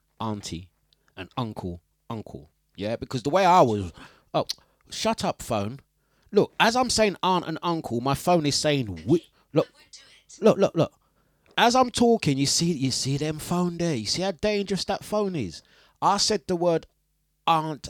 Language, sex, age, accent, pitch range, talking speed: English, male, 30-49, British, 110-175 Hz, 175 wpm